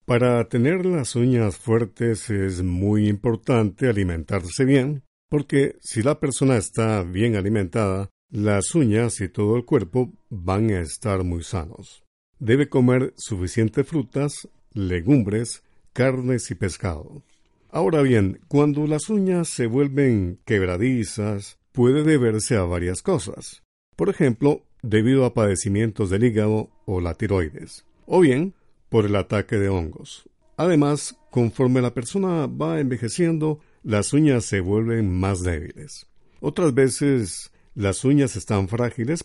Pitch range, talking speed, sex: 100-135 Hz, 130 wpm, male